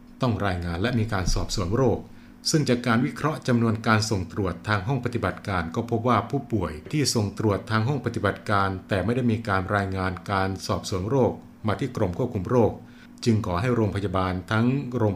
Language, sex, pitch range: Thai, male, 95-115 Hz